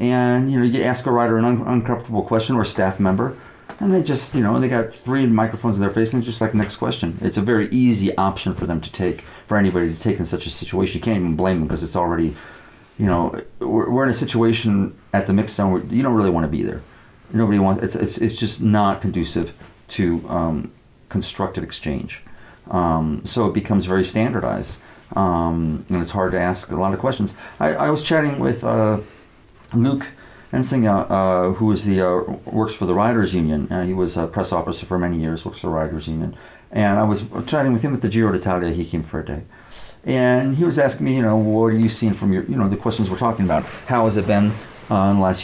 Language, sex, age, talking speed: English, male, 40-59, 240 wpm